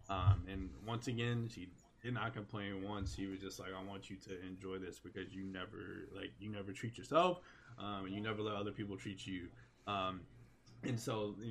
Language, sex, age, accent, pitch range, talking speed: English, male, 20-39, American, 100-115 Hz, 210 wpm